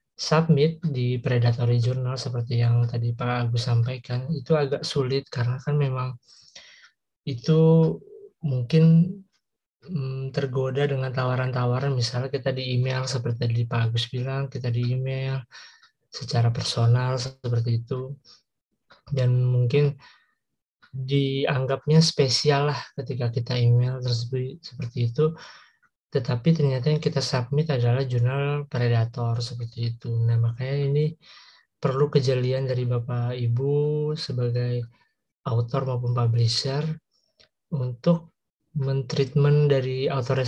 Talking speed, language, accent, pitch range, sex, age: 105 wpm, Indonesian, native, 125-145 Hz, male, 20-39